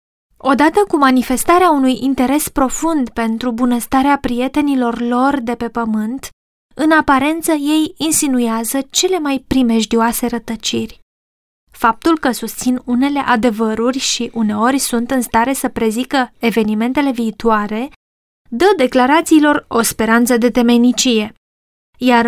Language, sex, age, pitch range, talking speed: Romanian, female, 20-39, 235-295 Hz, 115 wpm